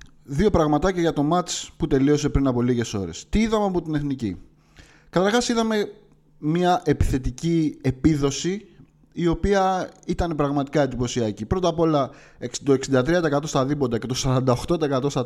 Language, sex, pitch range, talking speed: Greek, male, 120-170 Hz, 145 wpm